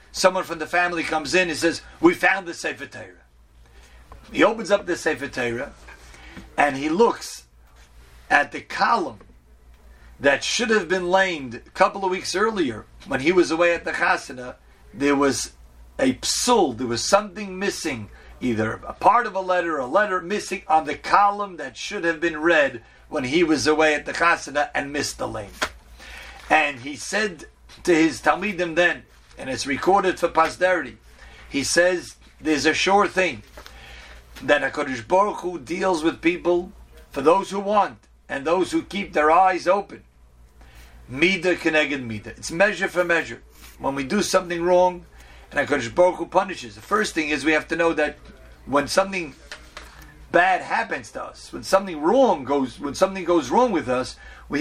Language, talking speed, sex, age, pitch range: English, 165 wpm, male, 40-59, 120-185 Hz